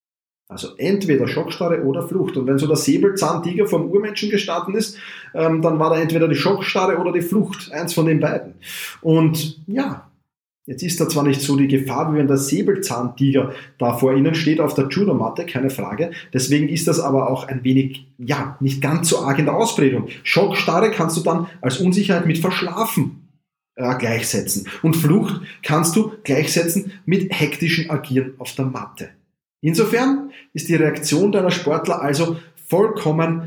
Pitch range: 140-190 Hz